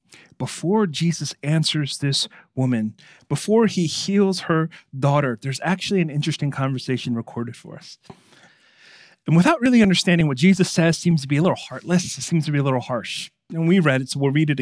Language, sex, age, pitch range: English, male, 30-49, 145-205 Hz